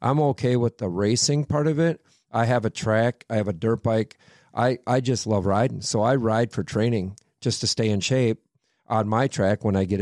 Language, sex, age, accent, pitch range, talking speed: English, male, 50-69, American, 110-125 Hz, 230 wpm